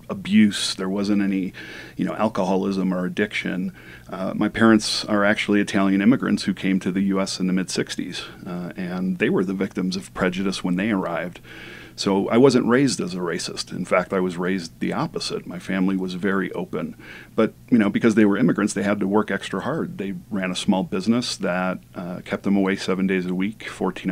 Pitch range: 95-105 Hz